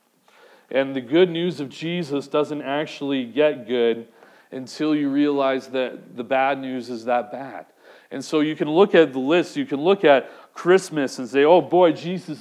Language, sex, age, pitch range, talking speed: English, male, 40-59, 130-170 Hz, 185 wpm